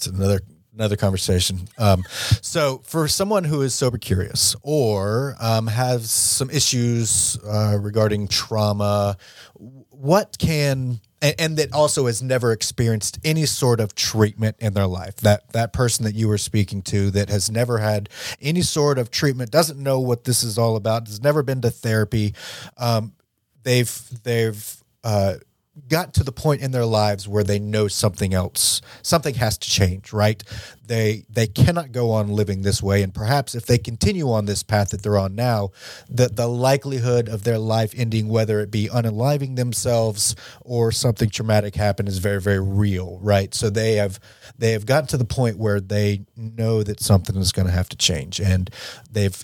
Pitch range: 100-120 Hz